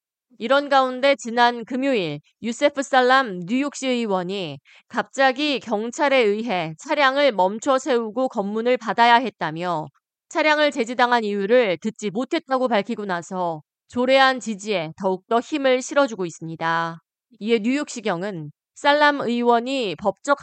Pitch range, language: 200-270 Hz, Korean